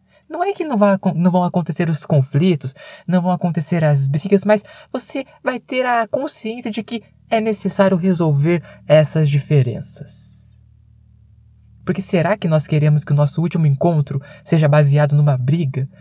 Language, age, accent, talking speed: Portuguese, 20-39, Brazilian, 150 wpm